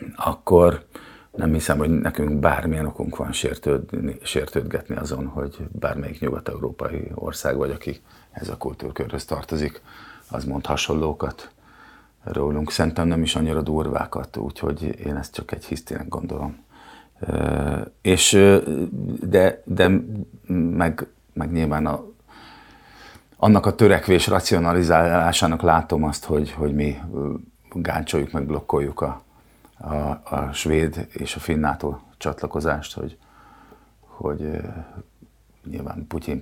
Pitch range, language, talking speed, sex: 75-85 Hz, English, 115 wpm, male